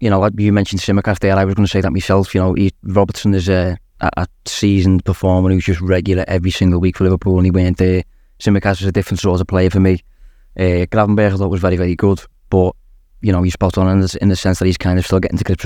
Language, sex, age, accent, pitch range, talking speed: English, male, 20-39, British, 90-100 Hz, 265 wpm